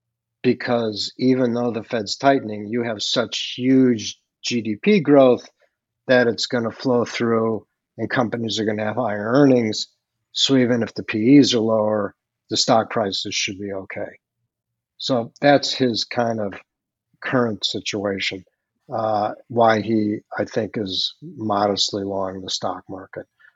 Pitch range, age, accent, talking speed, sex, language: 110-120 Hz, 50-69, American, 145 wpm, male, English